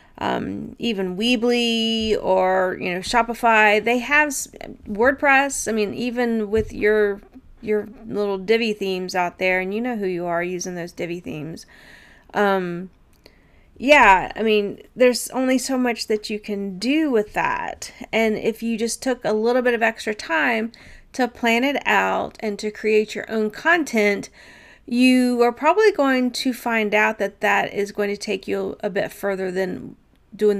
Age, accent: 30-49, American